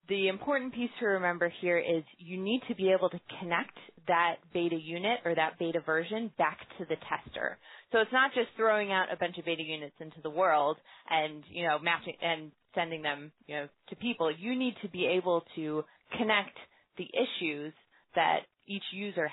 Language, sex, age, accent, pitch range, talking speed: English, female, 20-39, American, 155-200 Hz, 190 wpm